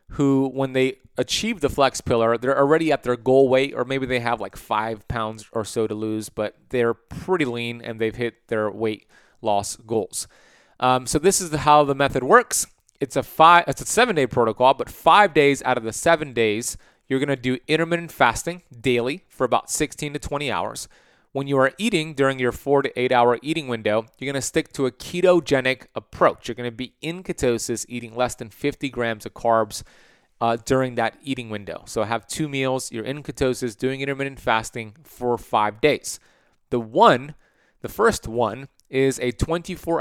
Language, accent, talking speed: English, American, 190 wpm